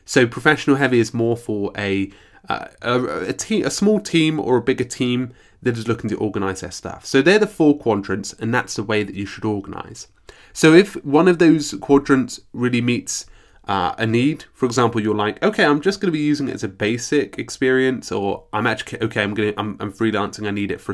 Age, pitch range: 20-39, 105-145 Hz